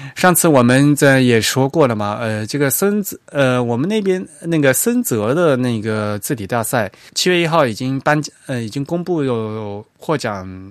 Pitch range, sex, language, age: 110-145 Hz, male, Chinese, 20-39